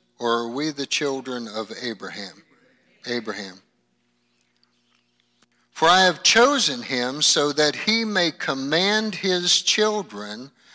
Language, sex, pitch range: English, male, 110-180 Hz